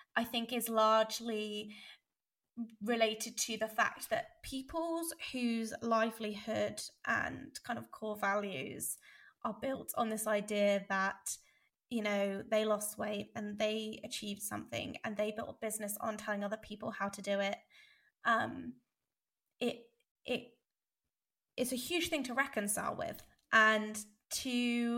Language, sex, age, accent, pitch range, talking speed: English, female, 20-39, British, 215-245 Hz, 135 wpm